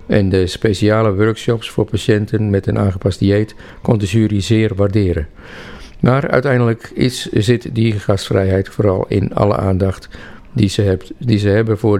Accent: Dutch